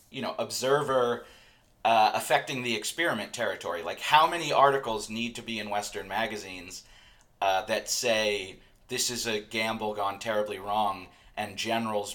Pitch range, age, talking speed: 105-135 Hz, 30-49, 150 wpm